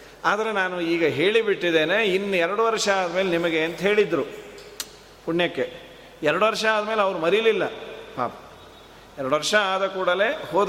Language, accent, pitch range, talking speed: Kannada, native, 165-200 Hz, 130 wpm